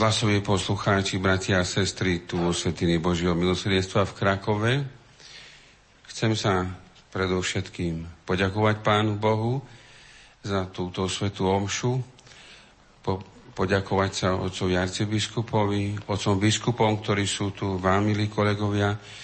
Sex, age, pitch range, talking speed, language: male, 50-69, 95-105 Hz, 105 wpm, Slovak